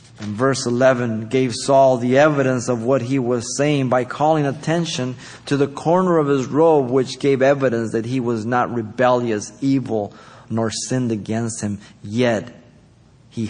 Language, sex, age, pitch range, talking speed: English, male, 30-49, 110-130 Hz, 160 wpm